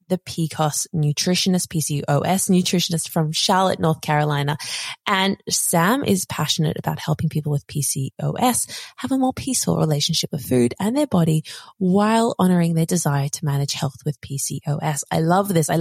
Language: English